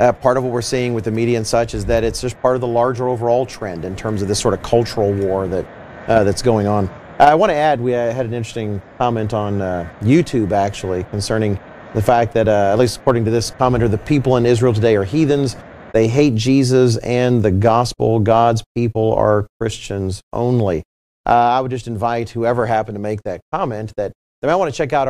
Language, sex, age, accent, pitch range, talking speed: English, male, 40-59, American, 110-130 Hz, 225 wpm